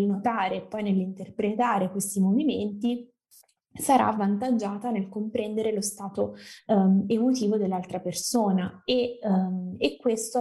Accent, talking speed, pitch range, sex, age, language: native, 115 wpm, 195-225 Hz, female, 20-39, Italian